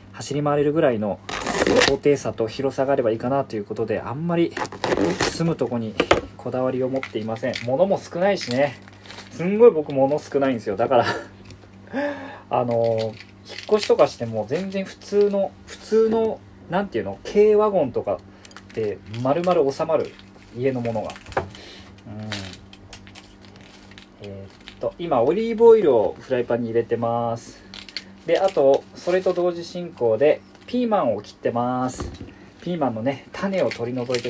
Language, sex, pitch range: Japanese, male, 100-155 Hz